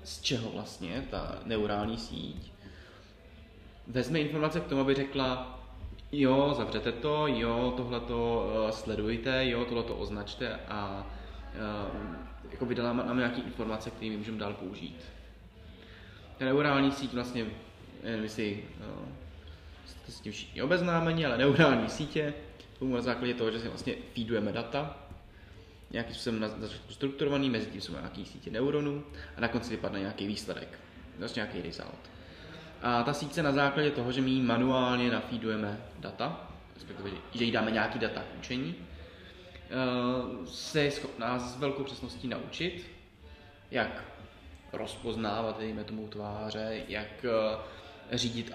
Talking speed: 125 wpm